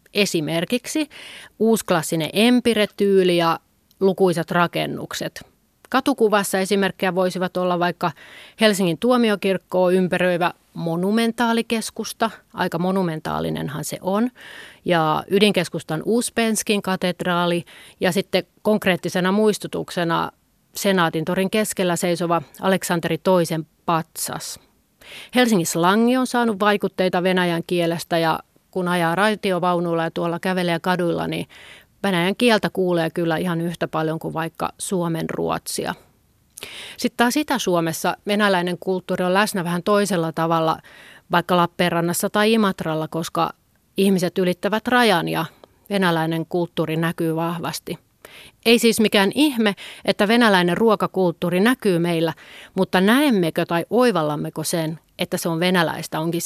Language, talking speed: Finnish, 110 wpm